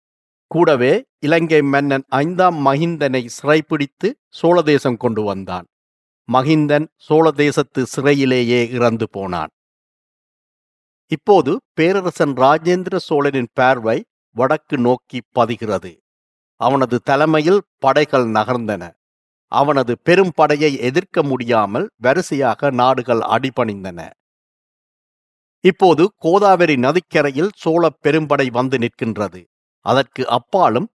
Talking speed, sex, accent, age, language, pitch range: 85 wpm, male, native, 50-69, Tamil, 120-155 Hz